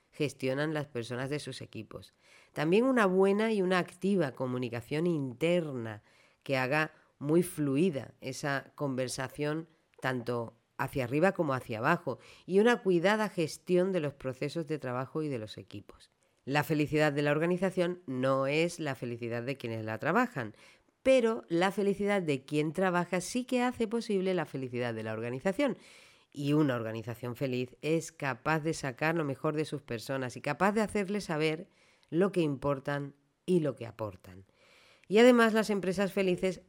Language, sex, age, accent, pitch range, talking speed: Spanish, female, 40-59, Spanish, 130-175 Hz, 160 wpm